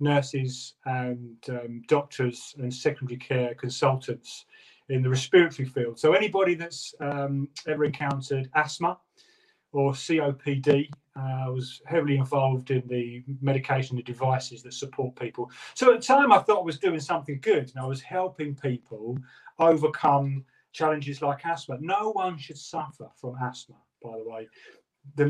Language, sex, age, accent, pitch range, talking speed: English, male, 40-59, British, 130-155 Hz, 150 wpm